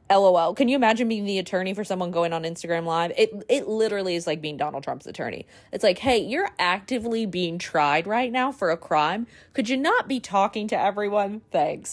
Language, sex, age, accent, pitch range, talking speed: English, female, 20-39, American, 165-205 Hz, 210 wpm